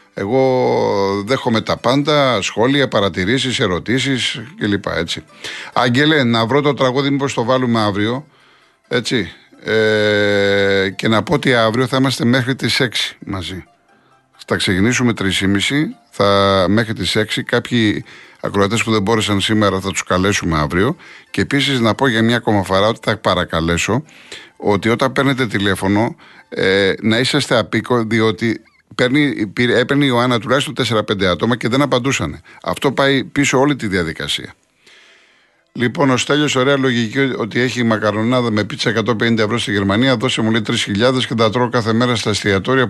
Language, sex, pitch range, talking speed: Greek, male, 105-130 Hz, 150 wpm